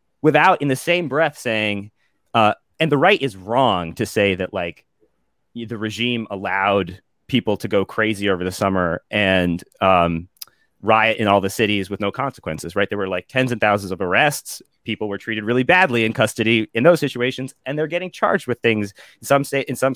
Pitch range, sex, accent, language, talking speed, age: 105-135 Hz, male, American, English, 200 wpm, 30-49